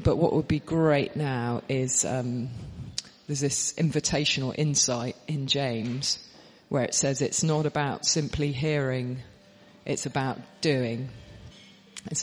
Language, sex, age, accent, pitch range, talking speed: English, female, 40-59, British, 130-150 Hz, 130 wpm